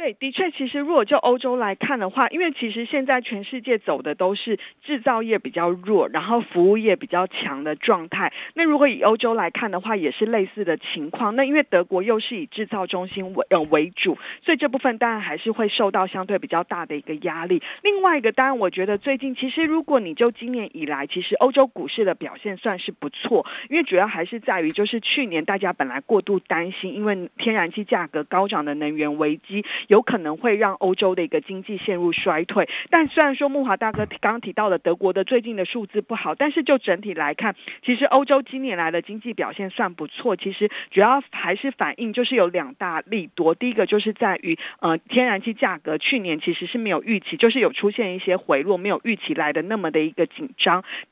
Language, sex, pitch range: Chinese, female, 185-255 Hz